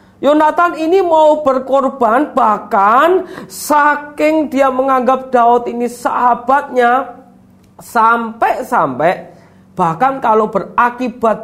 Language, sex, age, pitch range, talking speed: Indonesian, male, 40-59, 205-290 Hz, 80 wpm